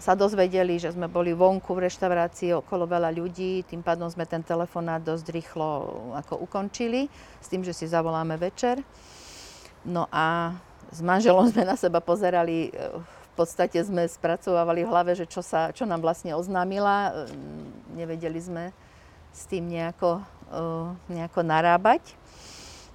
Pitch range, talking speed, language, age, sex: 165-185 Hz, 140 wpm, Slovak, 50-69, female